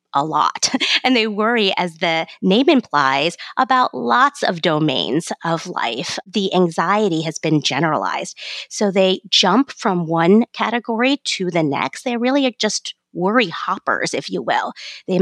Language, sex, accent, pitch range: English, female, American, 170-230 Hz